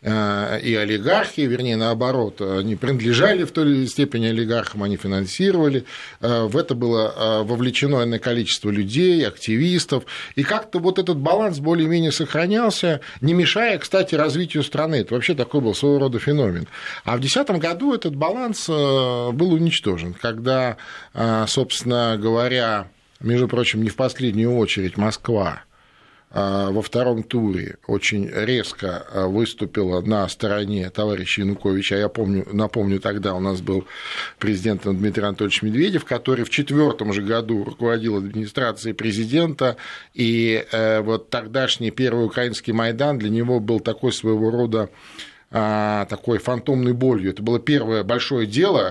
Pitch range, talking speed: 110-140 Hz, 130 wpm